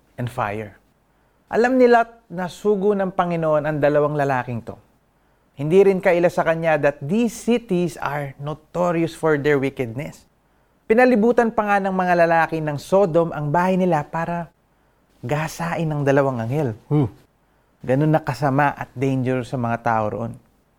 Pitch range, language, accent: 130-185 Hz, Filipino, native